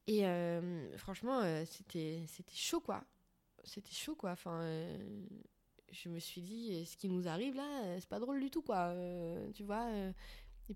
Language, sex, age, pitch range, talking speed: French, female, 20-39, 180-215 Hz, 180 wpm